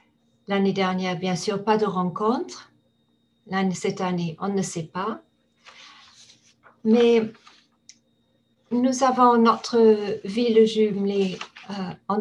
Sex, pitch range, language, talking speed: female, 185-225 Hz, French, 100 wpm